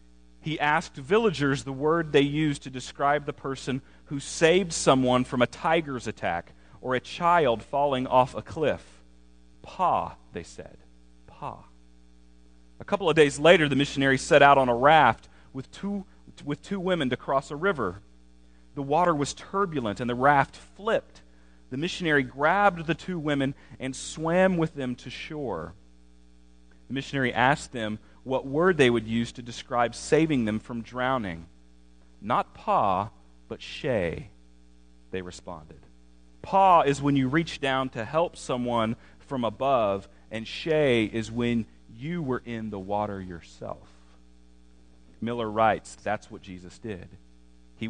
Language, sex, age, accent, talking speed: English, male, 40-59, American, 150 wpm